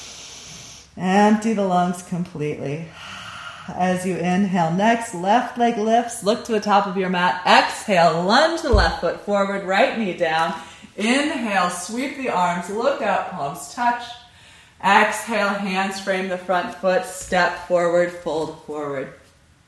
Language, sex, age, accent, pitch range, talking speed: English, female, 30-49, American, 170-225 Hz, 135 wpm